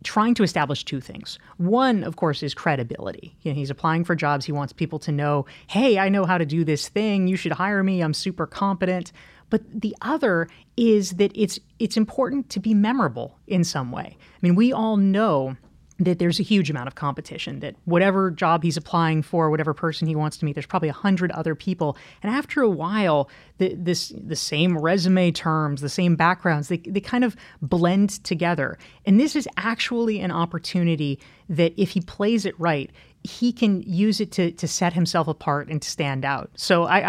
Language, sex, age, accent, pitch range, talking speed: English, female, 30-49, American, 155-200 Hz, 200 wpm